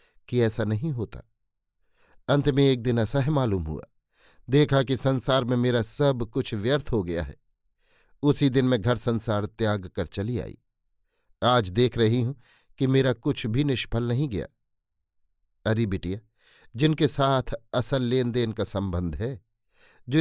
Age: 50-69